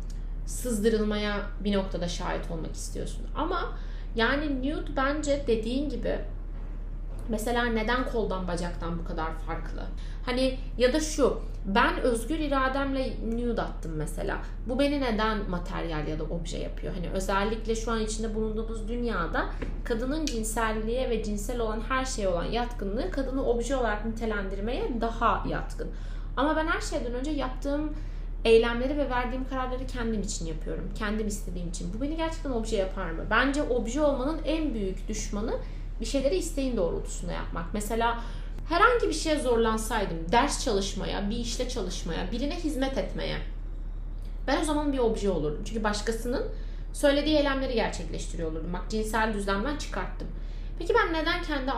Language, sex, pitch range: Turkish, female, 205-265 Hz